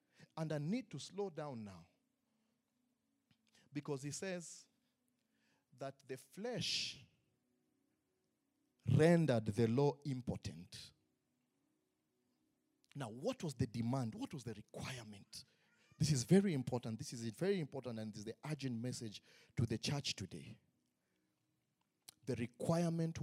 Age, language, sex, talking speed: 50-69, English, male, 120 wpm